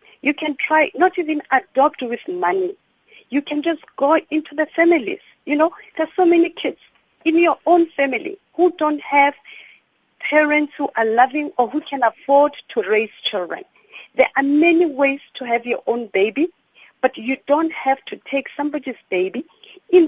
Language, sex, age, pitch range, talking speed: English, female, 50-69, 265-330 Hz, 170 wpm